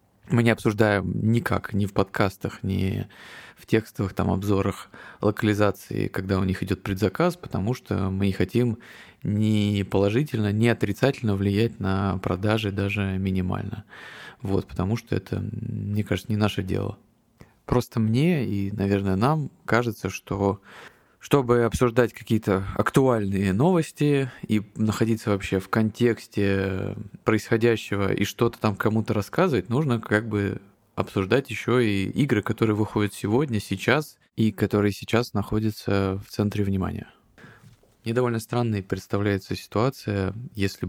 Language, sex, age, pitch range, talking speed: Russian, male, 20-39, 100-115 Hz, 130 wpm